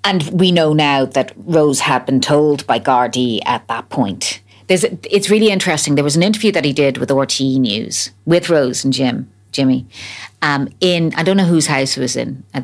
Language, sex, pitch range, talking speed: English, female, 125-155 Hz, 215 wpm